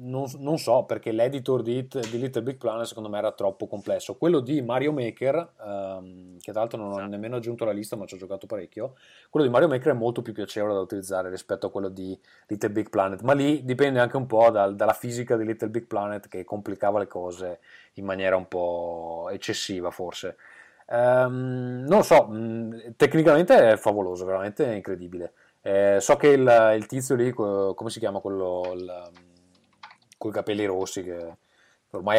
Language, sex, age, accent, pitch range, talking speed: Italian, male, 30-49, native, 95-120 Hz, 185 wpm